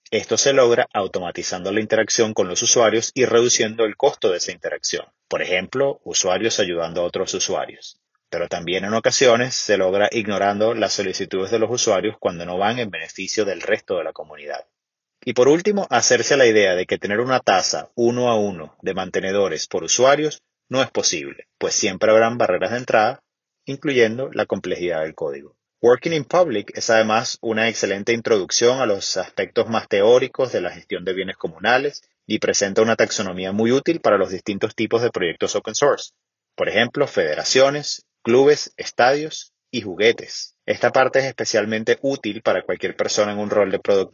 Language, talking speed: Spanish, 175 wpm